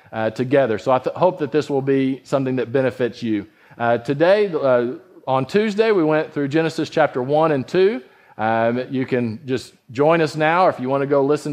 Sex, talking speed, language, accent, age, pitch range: male, 210 wpm, English, American, 40-59, 130-170 Hz